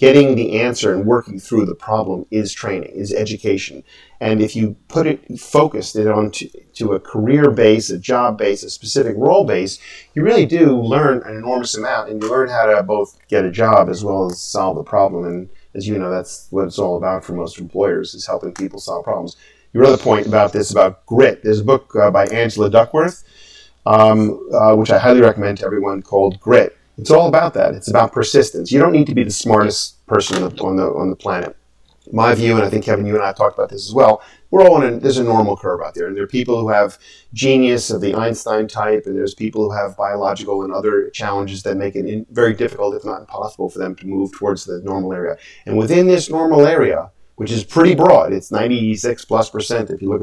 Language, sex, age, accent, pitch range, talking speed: English, male, 40-59, American, 100-125 Hz, 230 wpm